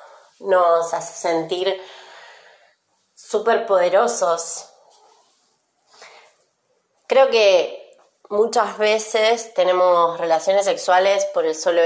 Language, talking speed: Spanish, 75 wpm